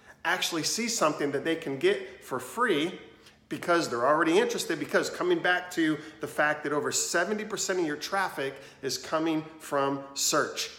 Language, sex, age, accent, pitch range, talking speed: English, male, 40-59, American, 140-190 Hz, 160 wpm